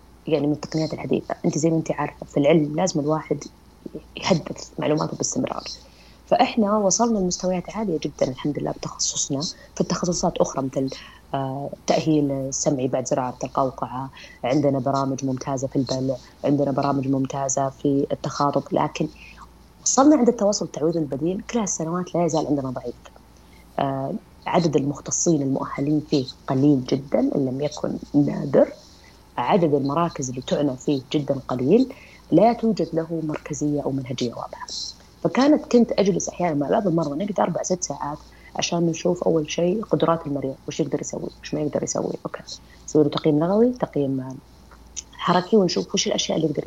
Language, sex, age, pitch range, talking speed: Arabic, female, 20-39, 140-175 Hz, 145 wpm